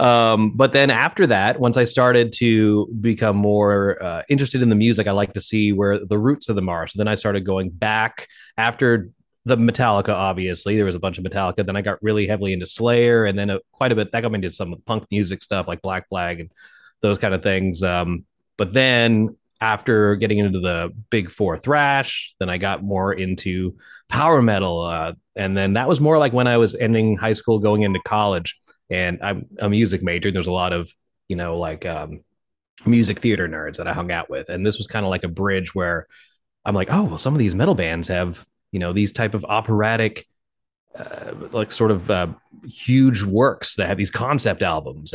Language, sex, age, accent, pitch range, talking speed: English, male, 30-49, American, 95-115 Hz, 220 wpm